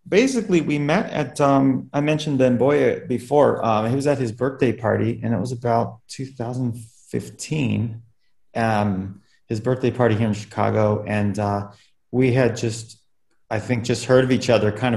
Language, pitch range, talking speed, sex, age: English, 95-120 Hz, 170 wpm, male, 30-49